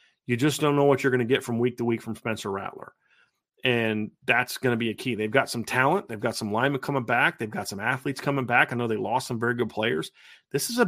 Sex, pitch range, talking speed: male, 115-140 Hz, 275 wpm